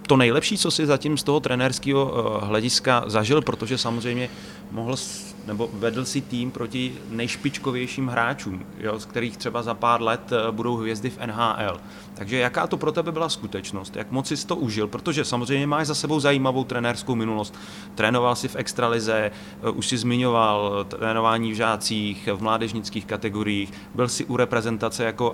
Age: 30-49